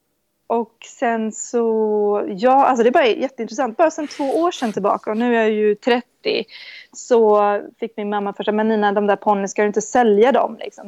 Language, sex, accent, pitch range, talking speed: Swedish, female, native, 205-240 Hz, 205 wpm